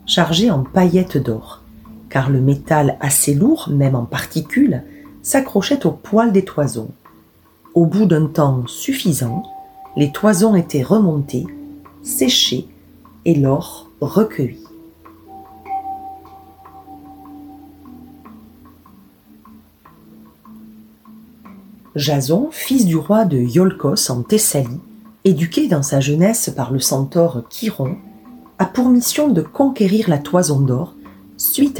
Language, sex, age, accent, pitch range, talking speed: French, female, 40-59, French, 135-215 Hz, 105 wpm